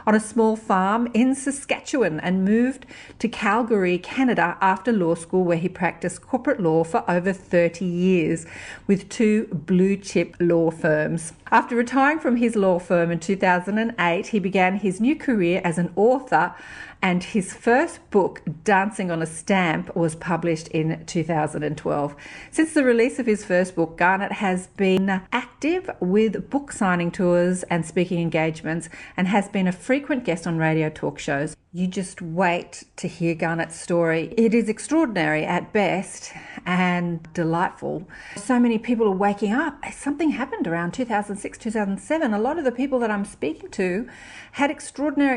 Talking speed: 160 wpm